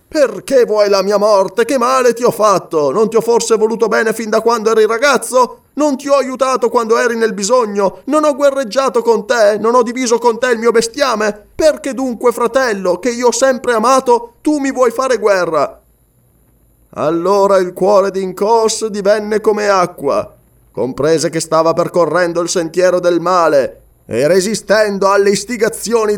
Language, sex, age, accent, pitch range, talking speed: Italian, male, 20-39, native, 190-255 Hz, 170 wpm